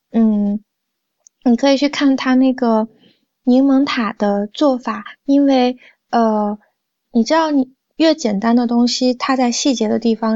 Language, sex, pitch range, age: Chinese, female, 215-250 Hz, 20-39